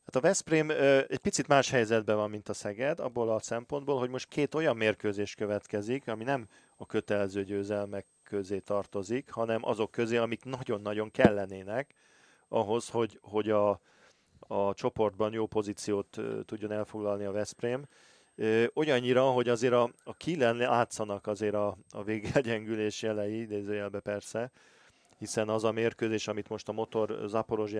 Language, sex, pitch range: Hungarian, male, 105-115 Hz